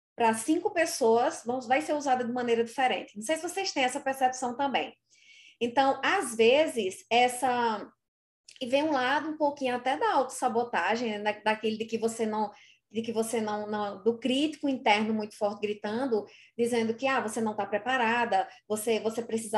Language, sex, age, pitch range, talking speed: Portuguese, female, 20-39, 220-270 Hz, 185 wpm